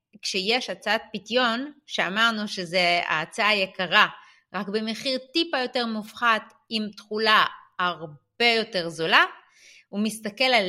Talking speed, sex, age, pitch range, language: 105 wpm, female, 30-49, 195-295 Hz, Hebrew